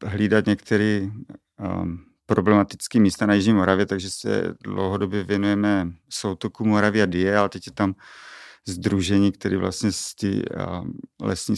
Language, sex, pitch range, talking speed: Czech, male, 95-105 Hz, 135 wpm